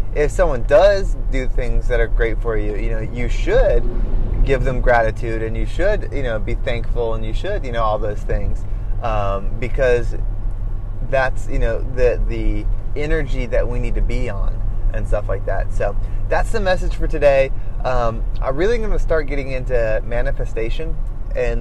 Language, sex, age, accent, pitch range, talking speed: English, male, 20-39, American, 105-130 Hz, 185 wpm